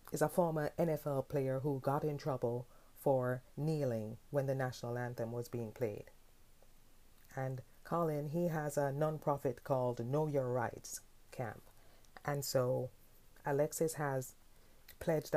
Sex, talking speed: female, 135 wpm